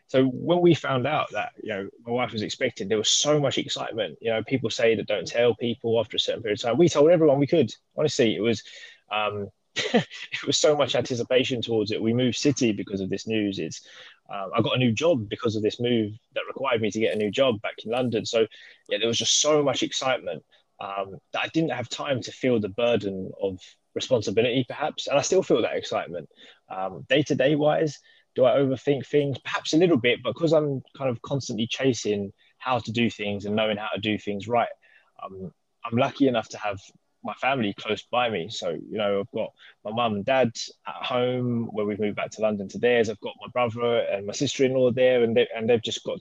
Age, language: 20-39, English